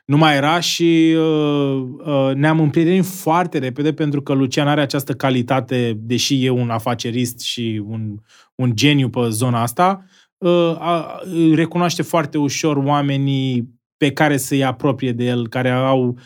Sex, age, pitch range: male, 20-39, 125-160 Hz